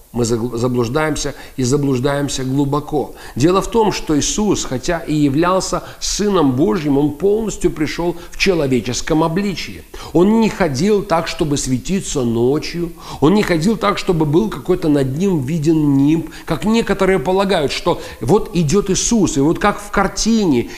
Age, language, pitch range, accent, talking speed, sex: 40-59, Russian, 145-195 Hz, native, 145 wpm, male